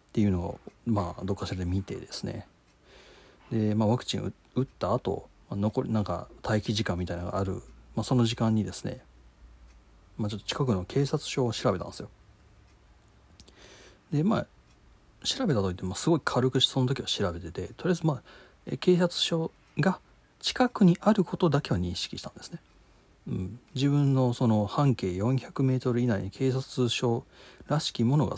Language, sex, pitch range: Japanese, male, 95-125 Hz